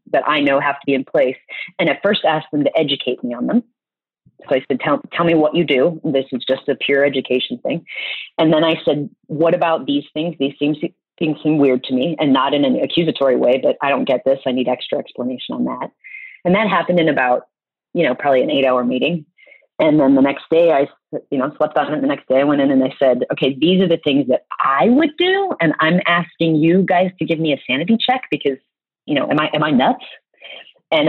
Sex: female